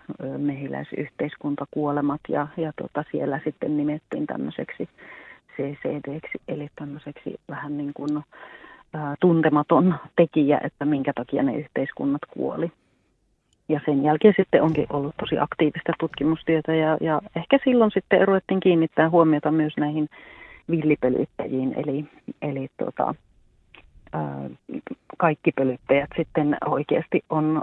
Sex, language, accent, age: female, Finnish, native, 40-59